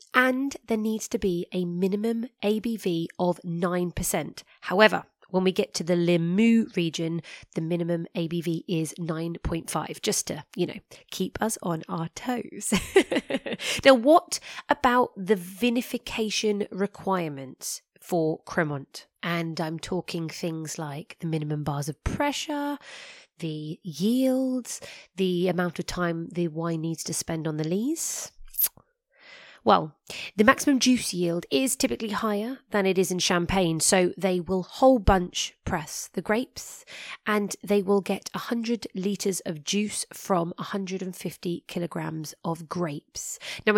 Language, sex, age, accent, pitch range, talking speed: English, female, 20-39, British, 170-225 Hz, 135 wpm